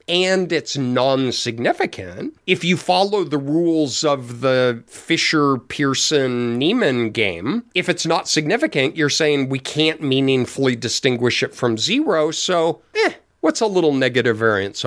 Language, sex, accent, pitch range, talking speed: English, male, American, 125-165 Hz, 135 wpm